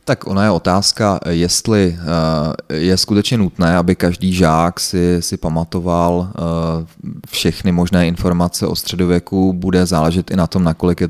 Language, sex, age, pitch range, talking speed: Czech, male, 30-49, 85-100 Hz, 140 wpm